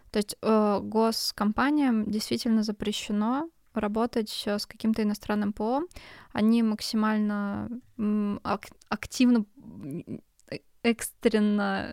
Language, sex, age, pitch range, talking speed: Russian, female, 20-39, 210-235 Hz, 75 wpm